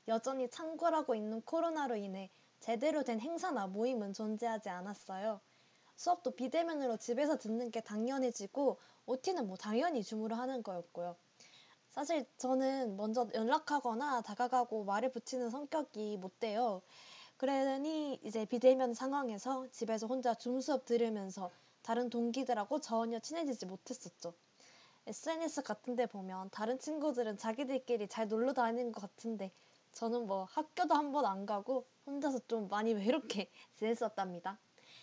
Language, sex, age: Korean, female, 20-39